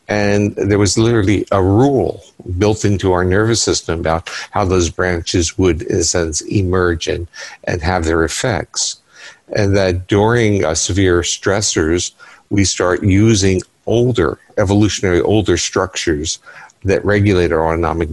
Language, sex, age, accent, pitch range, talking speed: English, male, 50-69, American, 85-105 Hz, 140 wpm